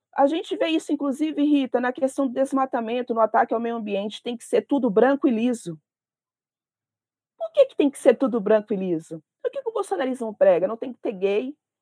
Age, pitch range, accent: 40-59, 220-280 Hz, Brazilian